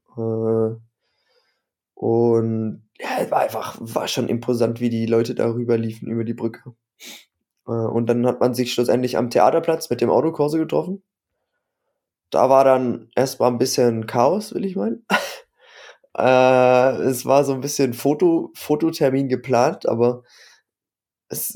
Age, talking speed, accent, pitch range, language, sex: 20-39, 145 wpm, German, 115-135 Hz, German, male